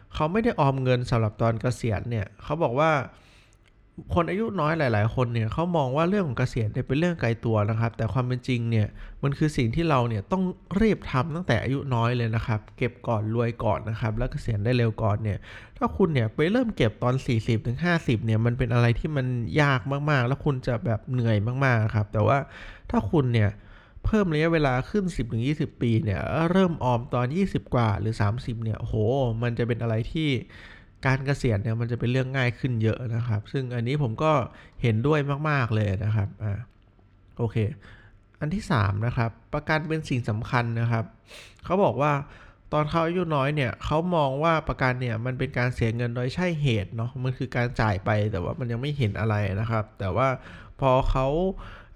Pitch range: 110-140 Hz